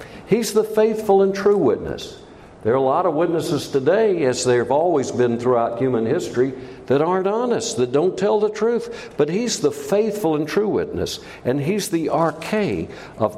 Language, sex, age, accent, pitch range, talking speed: English, male, 60-79, American, 130-200 Hz, 180 wpm